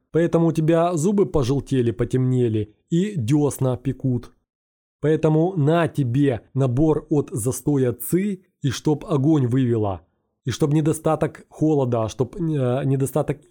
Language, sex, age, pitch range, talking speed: Russian, male, 20-39, 125-155 Hz, 120 wpm